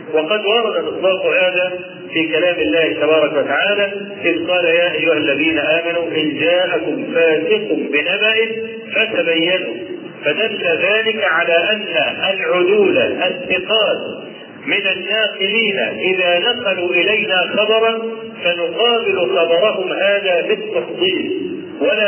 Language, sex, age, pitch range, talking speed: Arabic, male, 50-69, 165-225 Hz, 100 wpm